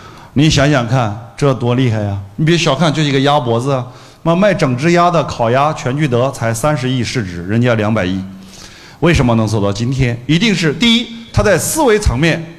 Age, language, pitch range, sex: 50-69, Chinese, 120-175 Hz, male